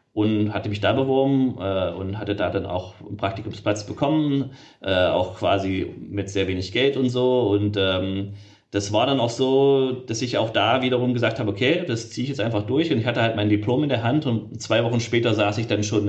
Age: 30-49